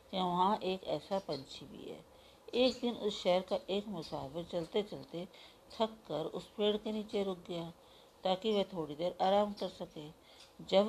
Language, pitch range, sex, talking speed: Hindi, 170-205 Hz, female, 170 wpm